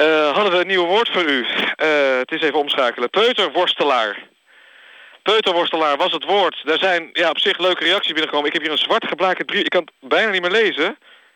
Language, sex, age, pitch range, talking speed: Dutch, male, 50-69, 150-195 Hz, 205 wpm